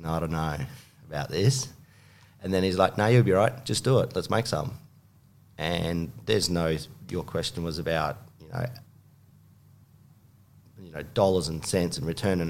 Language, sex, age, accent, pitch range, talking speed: English, male, 40-59, Australian, 85-110 Hz, 180 wpm